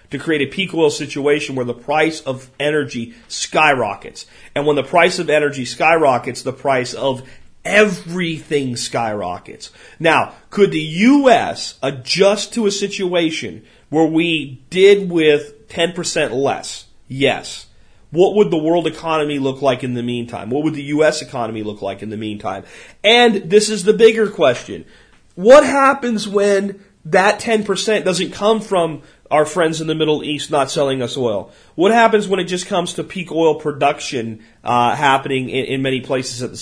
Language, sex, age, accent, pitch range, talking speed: English, male, 40-59, American, 135-200 Hz, 165 wpm